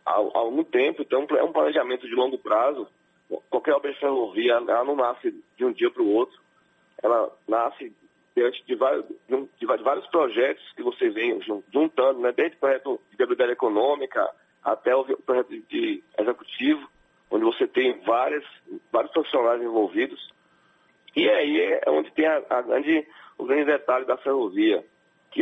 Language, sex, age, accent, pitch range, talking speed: Portuguese, male, 40-59, Brazilian, 275-385 Hz, 155 wpm